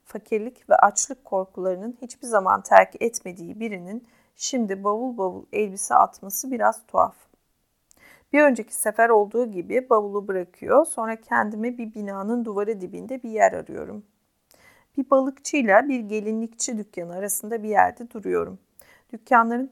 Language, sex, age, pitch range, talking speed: Turkish, female, 40-59, 200-245 Hz, 130 wpm